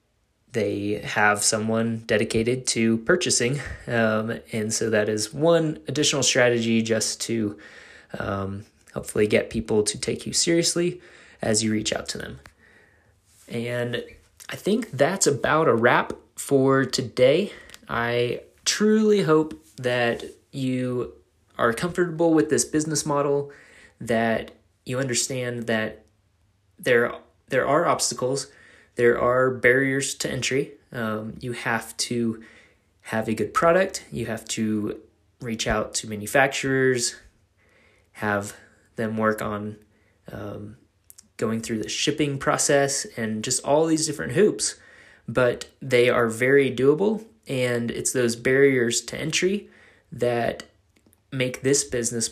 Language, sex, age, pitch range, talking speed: English, male, 20-39, 110-135 Hz, 125 wpm